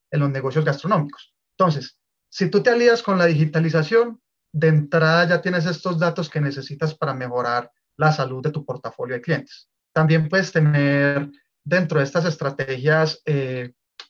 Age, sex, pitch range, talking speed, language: 30-49, male, 145-170 Hz, 160 wpm, Spanish